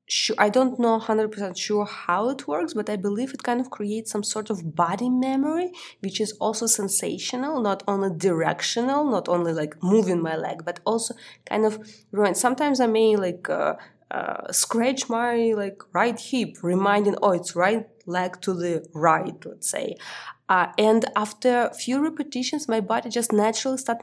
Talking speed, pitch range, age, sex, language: 170 wpm, 180-230 Hz, 20-39, female, English